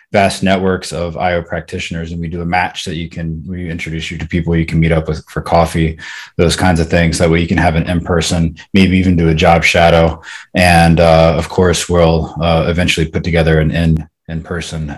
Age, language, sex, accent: 20-39, English, male, American